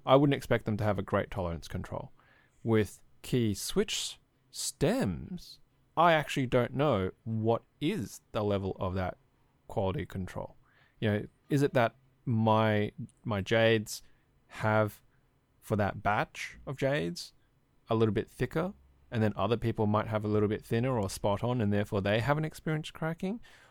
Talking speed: 160 wpm